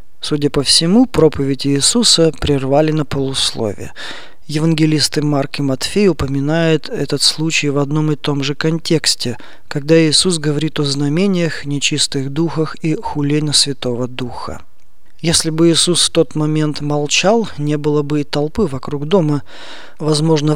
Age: 20-39